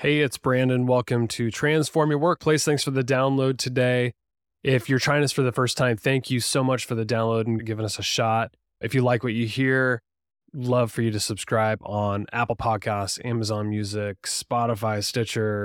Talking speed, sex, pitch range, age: 195 wpm, male, 115-140 Hz, 20-39